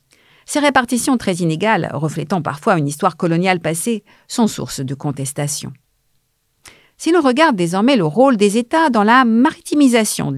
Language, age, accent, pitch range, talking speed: French, 50-69, French, 155-235 Hz, 150 wpm